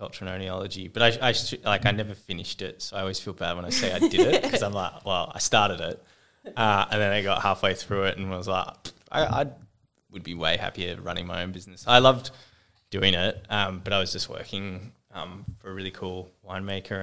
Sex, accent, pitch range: male, Australian, 95-105 Hz